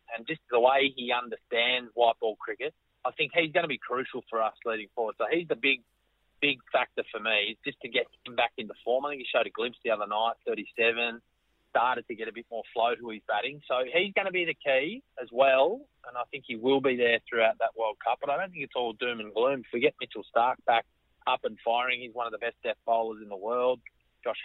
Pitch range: 115-130 Hz